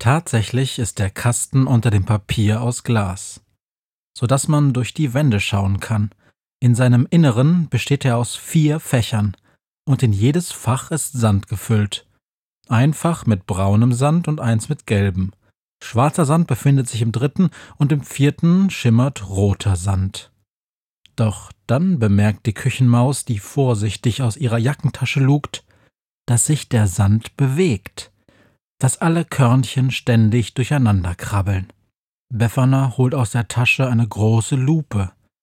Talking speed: 140 wpm